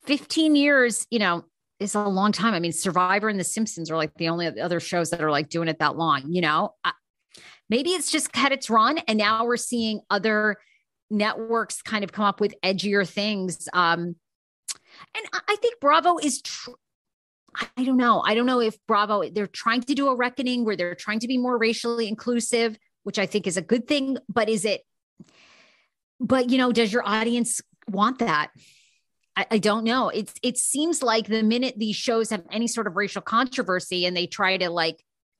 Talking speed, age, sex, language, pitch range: 200 wpm, 30-49, female, English, 190-250 Hz